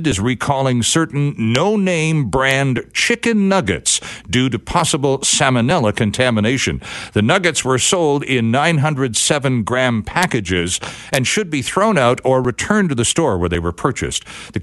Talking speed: 140 wpm